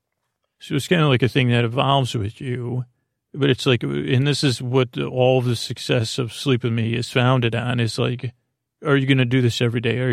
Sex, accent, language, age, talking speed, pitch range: male, American, English, 40-59, 230 wpm, 115-130 Hz